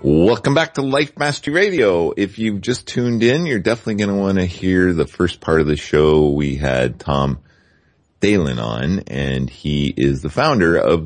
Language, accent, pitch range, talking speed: English, American, 80-110 Hz, 190 wpm